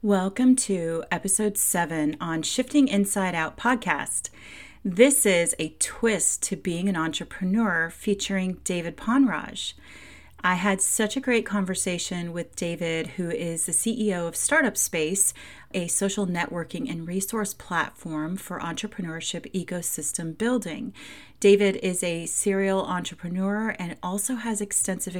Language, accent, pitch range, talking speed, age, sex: English, American, 165-205 Hz, 130 wpm, 30-49, female